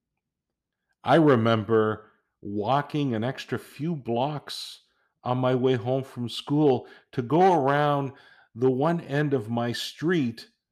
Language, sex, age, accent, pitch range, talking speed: English, male, 50-69, American, 95-145 Hz, 125 wpm